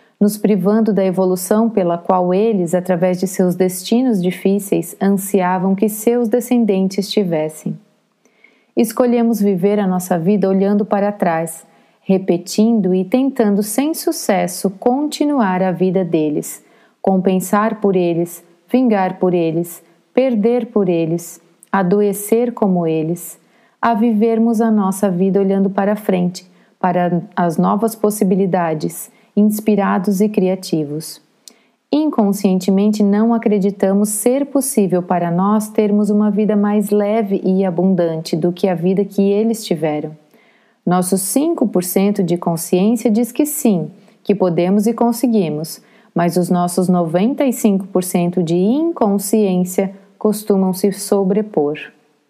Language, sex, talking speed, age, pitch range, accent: Portuguese, female, 115 wpm, 40-59, 185-220 Hz, Brazilian